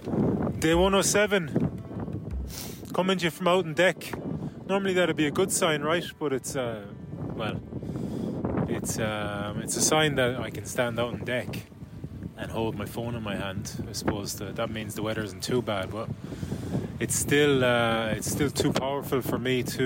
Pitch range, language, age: 115-150 Hz, English, 20-39